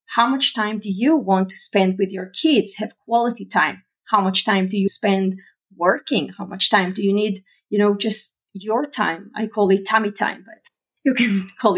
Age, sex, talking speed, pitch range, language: 30-49, female, 210 wpm, 195-230 Hz, English